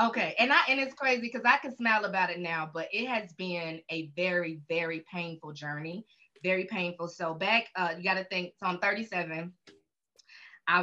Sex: female